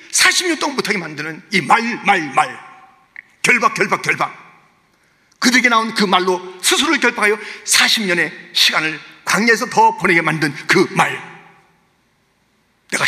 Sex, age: male, 40-59